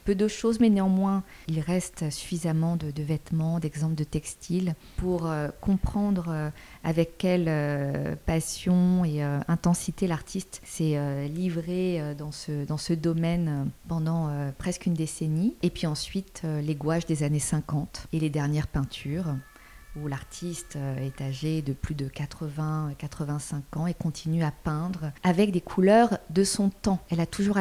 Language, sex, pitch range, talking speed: French, female, 155-180 Hz, 160 wpm